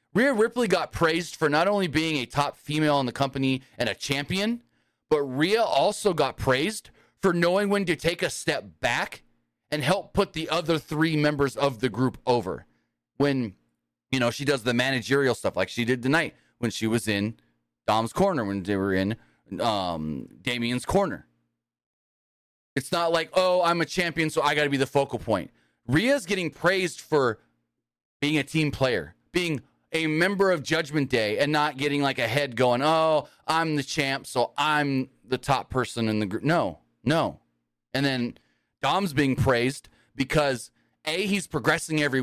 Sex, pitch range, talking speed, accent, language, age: male, 120-160 Hz, 180 wpm, American, English, 30-49